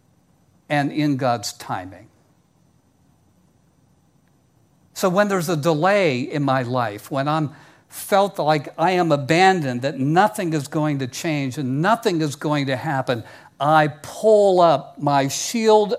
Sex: male